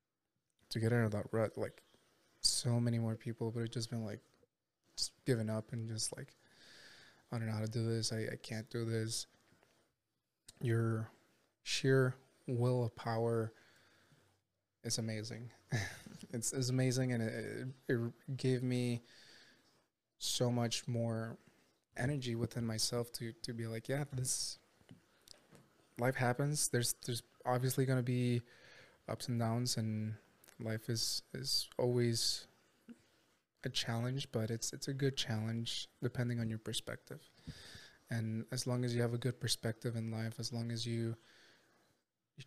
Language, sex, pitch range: English, male, 115-125 Hz